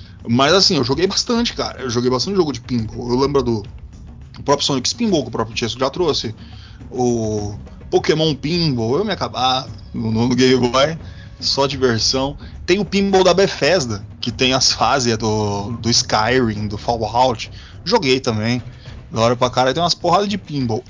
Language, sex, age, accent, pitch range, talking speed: Portuguese, male, 20-39, Brazilian, 110-140 Hz, 175 wpm